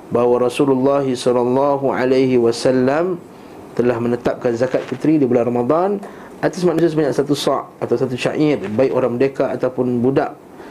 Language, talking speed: Malay, 130 wpm